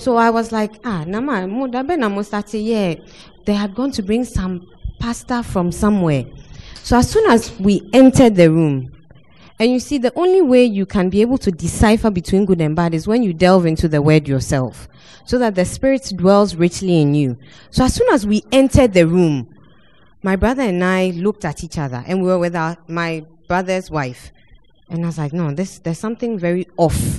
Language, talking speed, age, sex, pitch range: English, 190 wpm, 20-39, female, 165-225 Hz